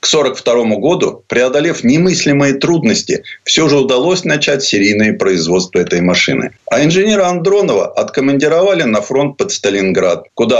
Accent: native